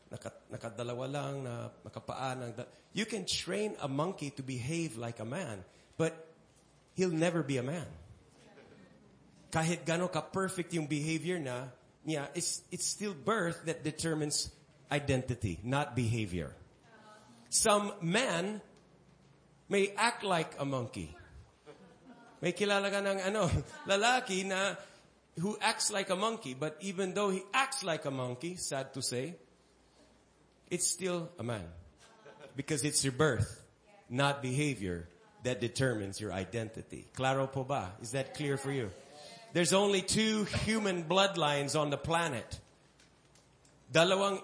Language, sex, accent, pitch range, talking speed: English, male, Filipino, 125-180 Hz, 110 wpm